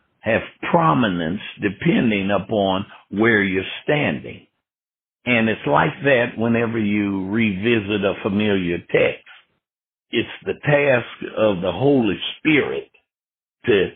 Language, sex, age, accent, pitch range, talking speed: English, male, 60-79, American, 100-120 Hz, 105 wpm